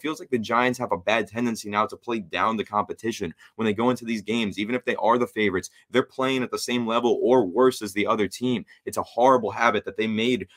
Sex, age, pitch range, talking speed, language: male, 20-39, 105-125 Hz, 255 wpm, English